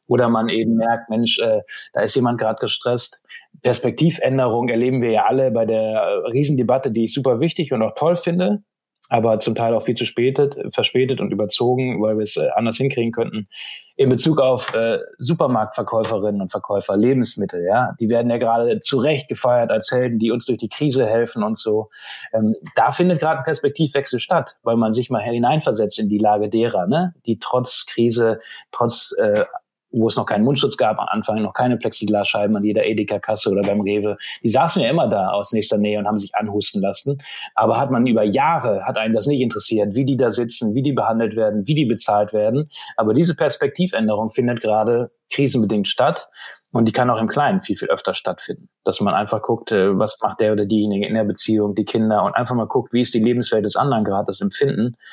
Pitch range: 110-135 Hz